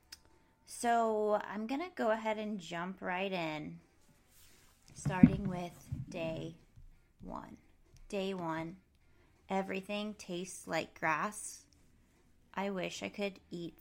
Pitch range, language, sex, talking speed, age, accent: 165-220 Hz, English, female, 110 wpm, 20-39, American